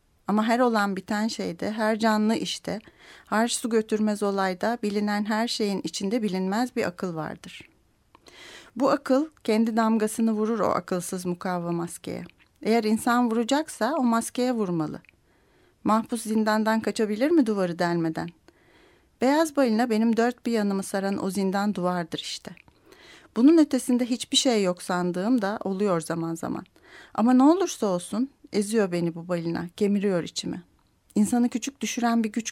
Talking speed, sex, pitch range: 140 wpm, female, 185-230 Hz